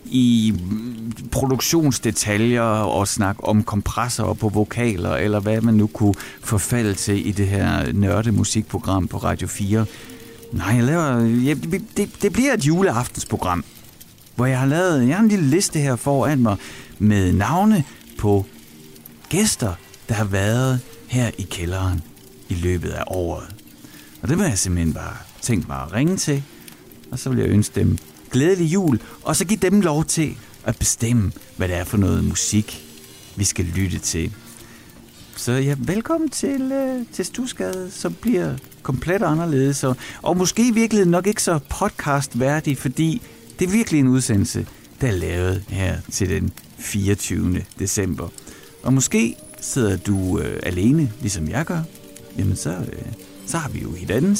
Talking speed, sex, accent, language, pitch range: 160 wpm, male, native, Danish, 100-145 Hz